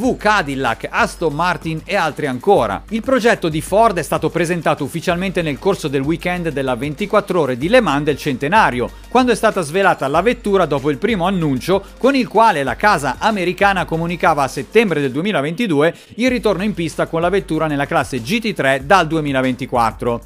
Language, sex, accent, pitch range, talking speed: Italian, male, native, 145-210 Hz, 175 wpm